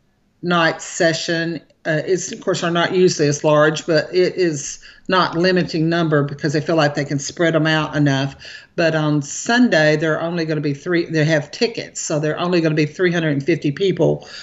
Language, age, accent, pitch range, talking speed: English, 50-69, American, 160-195 Hz, 195 wpm